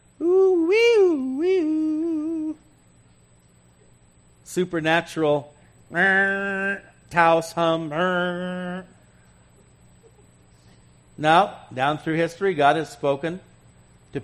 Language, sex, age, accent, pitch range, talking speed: English, male, 50-69, American, 135-180 Hz, 65 wpm